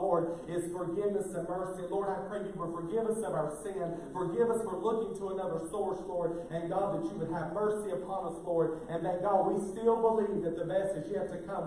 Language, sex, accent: English, male, American